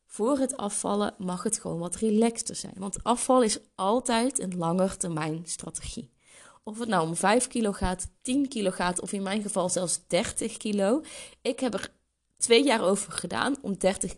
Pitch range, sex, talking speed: 170-220 Hz, female, 175 wpm